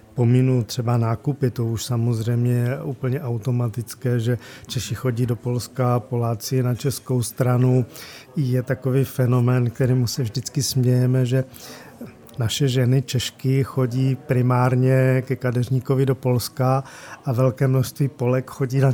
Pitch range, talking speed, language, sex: 125-135 Hz, 130 wpm, Czech, male